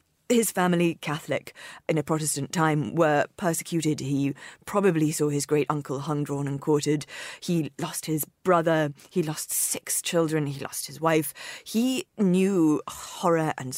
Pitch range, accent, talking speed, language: 150-190 Hz, British, 150 wpm, English